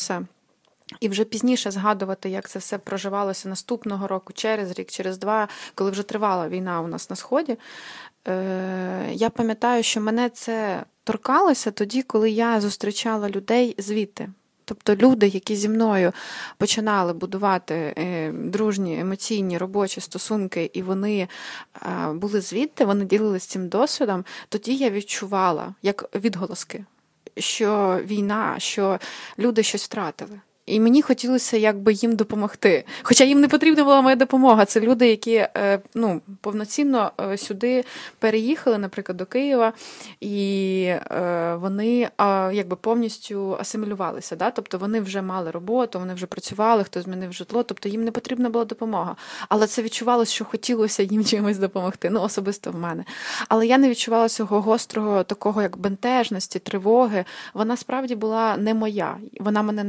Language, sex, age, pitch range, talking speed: Ukrainian, female, 20-39, 195-230 Hz, 140 wpm